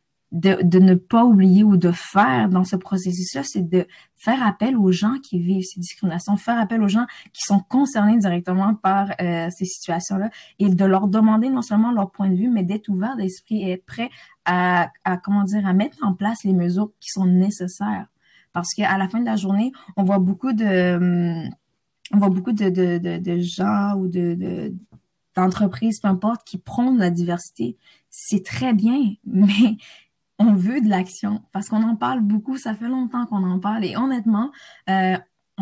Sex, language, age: female, French, 20-39